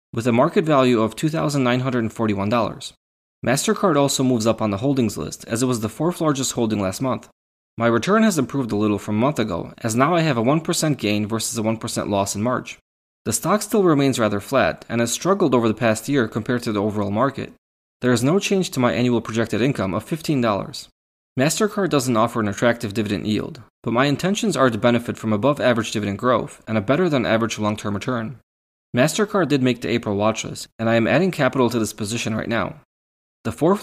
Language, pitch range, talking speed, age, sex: English, 110-140 Hz, 215 wpm, 20-39, male